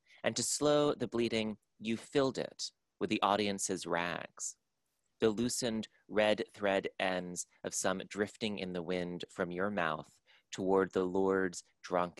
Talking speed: 150 wpm